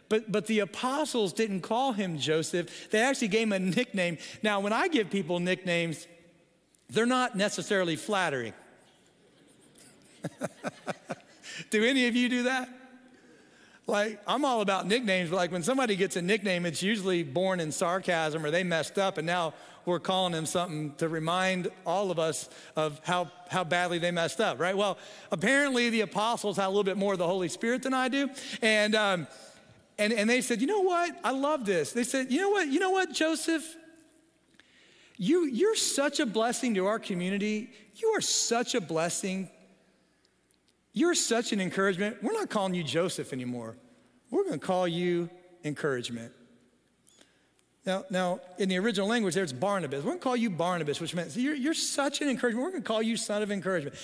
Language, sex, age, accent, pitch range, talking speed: English, male, 40-59, American, 175-245 Hz, 180 wpm